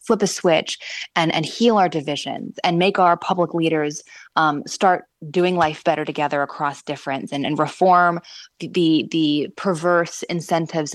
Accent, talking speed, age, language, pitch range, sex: American, 160 wpm, 20-39, English, 165-210 Hz, female